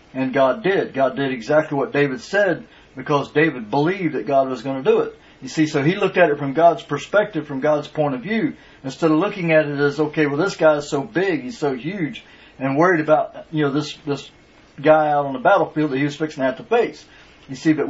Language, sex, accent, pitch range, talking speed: English, male, American, 145-180 Hz, 245 wpm